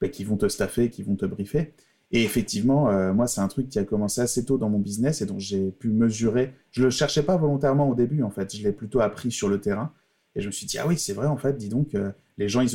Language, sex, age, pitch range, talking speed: French, male, 30-49, 110-145 Hz, 290 wpm